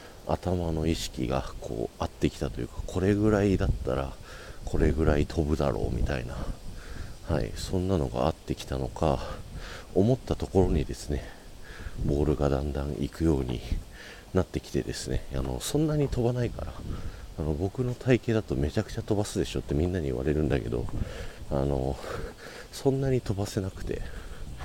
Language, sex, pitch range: Japanese, male, 75-100 Hz